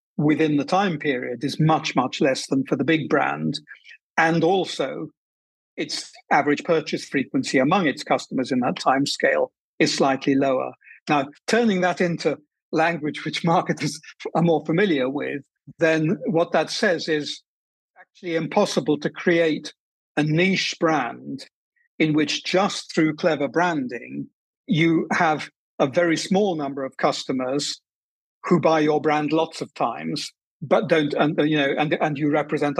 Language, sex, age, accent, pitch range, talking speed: English, male, 50-69, British, 145-170 Hz, 150 wpm